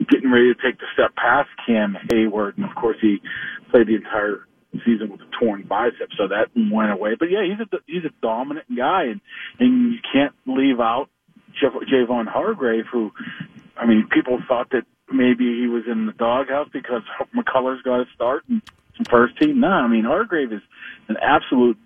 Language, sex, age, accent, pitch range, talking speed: English, male, 40-59, American, 115-180 Hz, 190 wpm